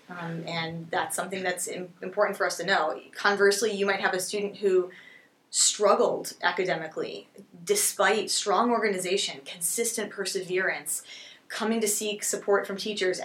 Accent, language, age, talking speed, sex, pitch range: American, English, 20-39, 140 wpm, female, 175-220 Hz